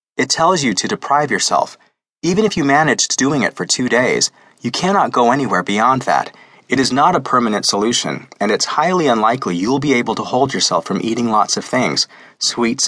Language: English